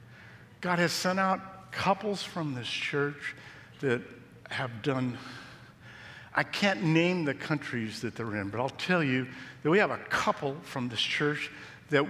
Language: English